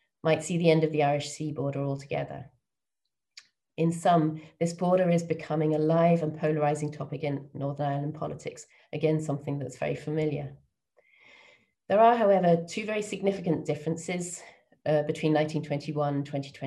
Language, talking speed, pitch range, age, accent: English, 145 wpm, 145-165 Hz, 30-49, British